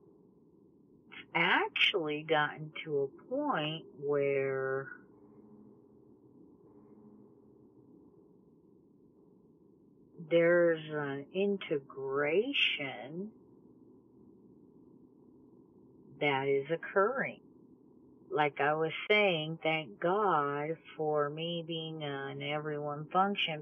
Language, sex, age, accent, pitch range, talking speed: English, female, 50-69, American, 145-195 Hz, 60 wpm